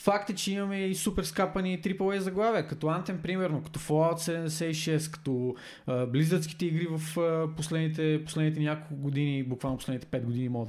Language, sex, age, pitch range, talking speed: Bulgarian, male, 20-39, 140-175 Hz, 155 wpm